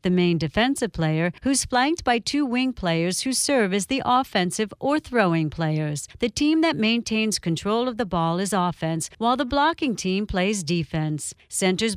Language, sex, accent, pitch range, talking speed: English, female, American, 175-240 Hz, 175 wpm